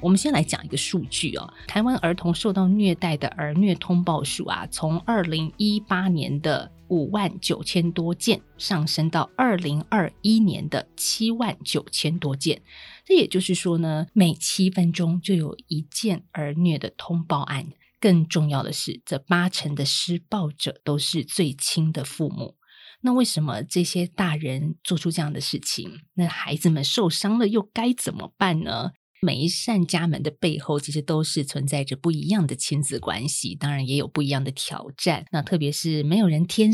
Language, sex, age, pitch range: Chinese, female, 20-39, 150-185 Hz